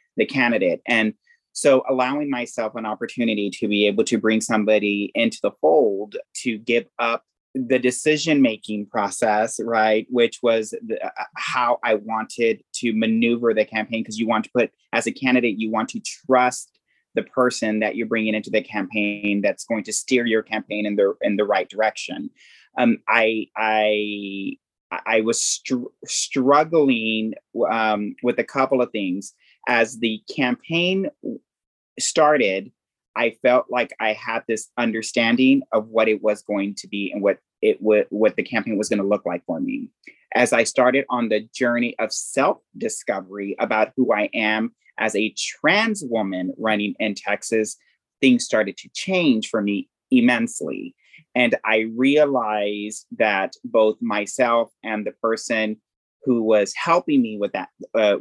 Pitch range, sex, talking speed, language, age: 105-125 Hz, male, 160 wpm, English, 30-49